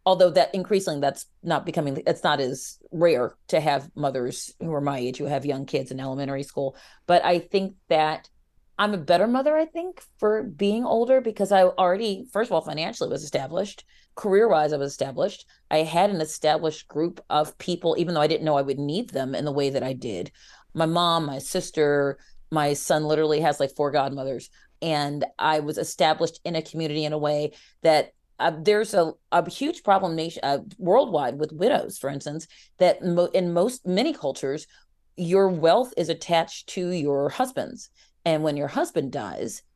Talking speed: 185 wpm